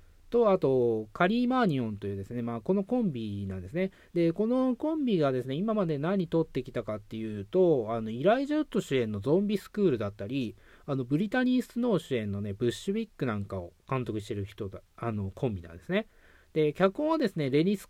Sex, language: male, Japanese